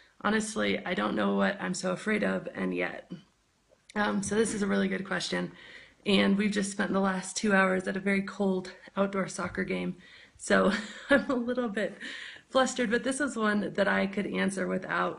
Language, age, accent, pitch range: English, 30-49, American, 175-215 Hz